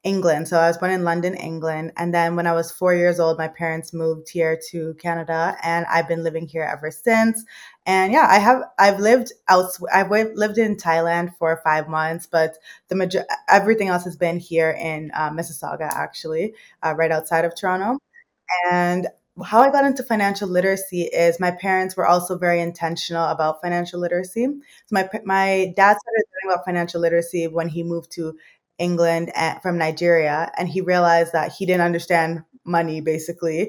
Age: 20-39